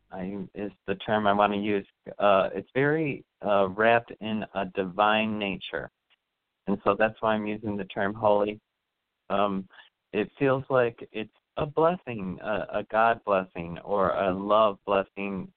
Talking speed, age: 155 wpm, 40-59